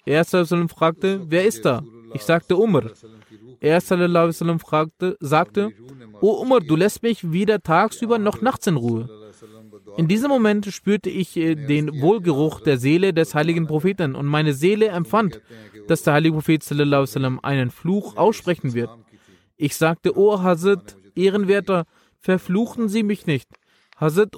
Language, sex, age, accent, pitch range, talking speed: German, male, 20-39, German, 140-185 Hz, 140 wpm